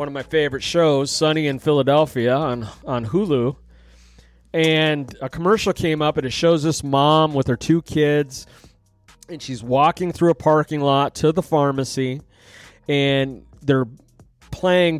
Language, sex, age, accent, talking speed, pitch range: English, male, 30-49, American, 150 wpm, 115-145 Hz